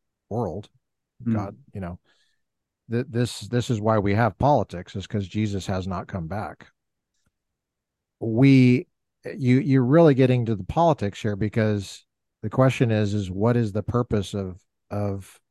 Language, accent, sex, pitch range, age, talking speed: English, American, male, 100-120 Hz, 50-69, 150 wpm